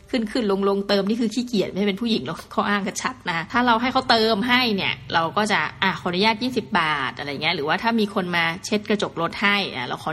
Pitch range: 190-235 Hz